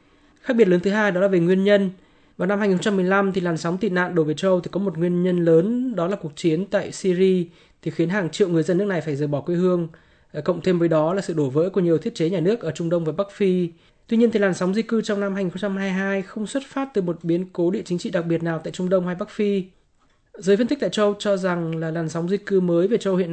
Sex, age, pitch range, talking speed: male, 20-39, 165-200 Hz, 285 wpm